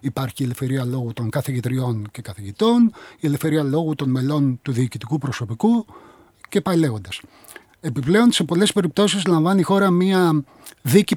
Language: Greek